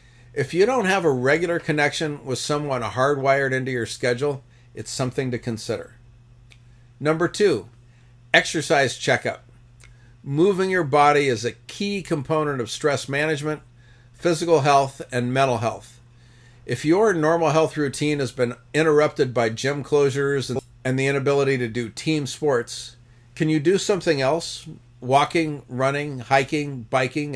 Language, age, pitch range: English, 50-69, 120-145 Hz